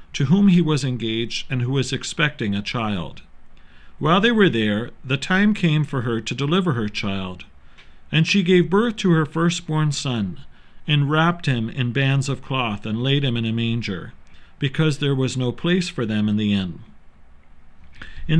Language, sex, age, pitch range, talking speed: English, male, 50-69, 110-170 Hz, 185 wpm